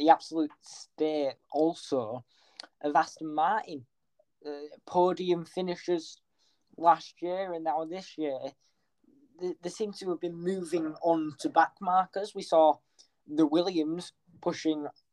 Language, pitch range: English, 145-170 Hz